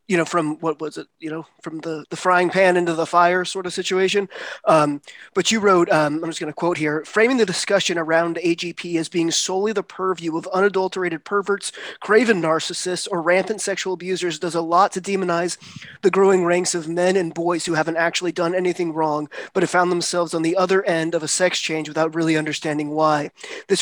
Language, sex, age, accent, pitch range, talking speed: English, male, 20-39, American, 160-185 Hz, 210 wpm